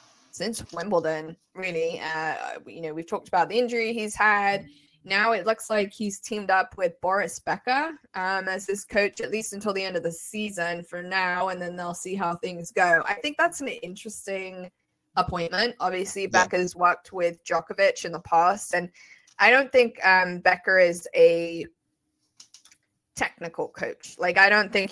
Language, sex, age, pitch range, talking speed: English, female, 20-39, 170-210 Hz, 175 wpm